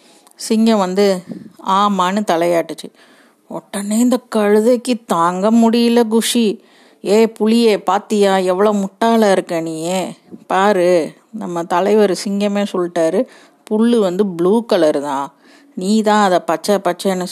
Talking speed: 105 wpm